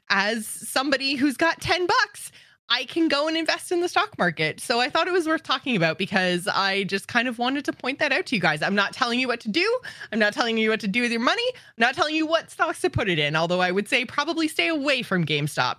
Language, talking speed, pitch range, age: English, 275 wpm, 180-280 Hz, 20-39